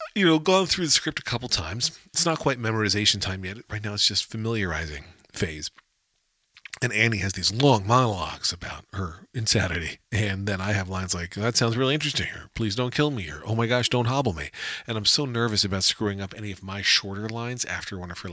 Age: 40-59